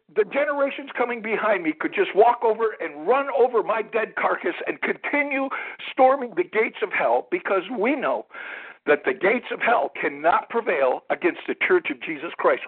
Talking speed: 180 wpm